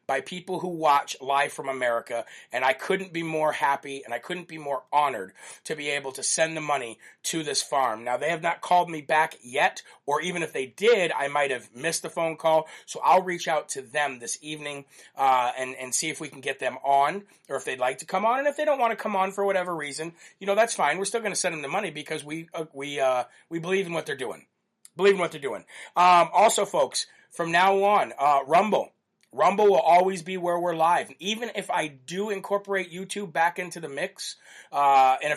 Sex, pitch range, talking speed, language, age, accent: male, 140-185 Hz, 235 wpm, English, 40-59, American